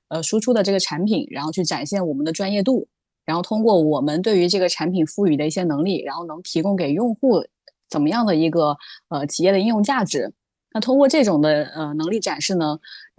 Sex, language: female, Chinese